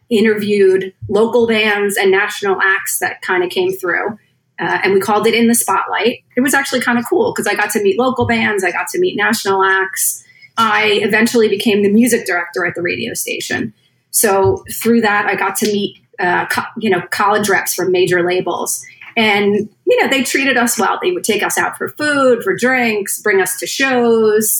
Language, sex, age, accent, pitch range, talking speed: English, female, 30-49, American, 195-245 Hz, 200 wpm